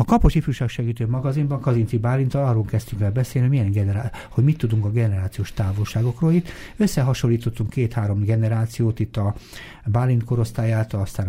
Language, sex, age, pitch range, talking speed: Hungarian, male, 60-79, 105-125 Hz, 155 wpm